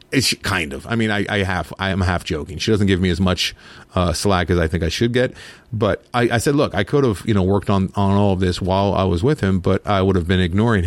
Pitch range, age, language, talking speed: 90-115 Hz, 40-59, English, 285 wpm